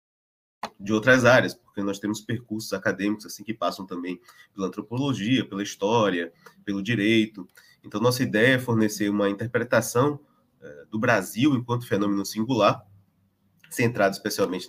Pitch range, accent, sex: 100-120 Hz, Brazilian, male